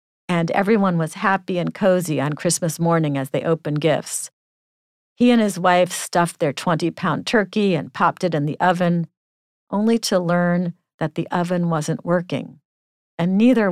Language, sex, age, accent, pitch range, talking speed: English, female, 50-69, American, 165-205 Hz, 160 wpm